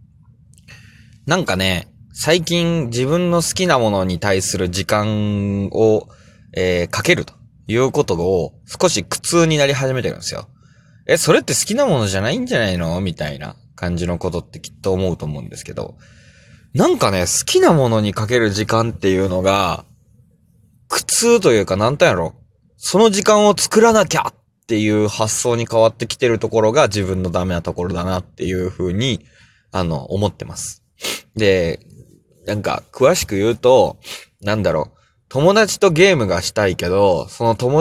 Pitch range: 100-160 Hz